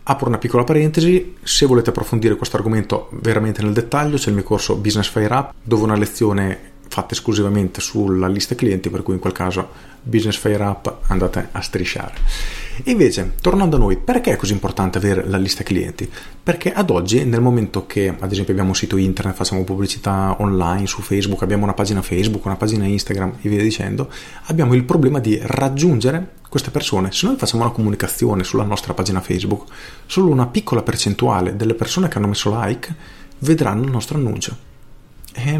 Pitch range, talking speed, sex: 100-135 Hz, 180 wpm, male